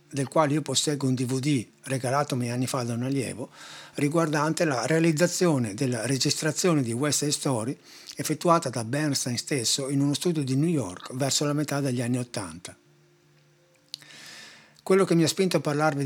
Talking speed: 165 wpm